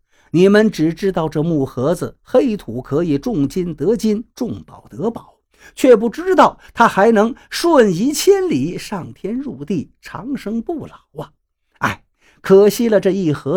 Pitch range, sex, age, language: 145-225 Hz, male, 50-69, Chinese